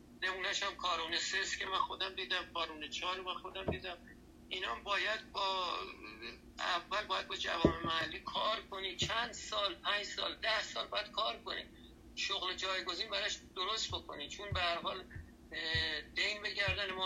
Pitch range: 170-195 Hz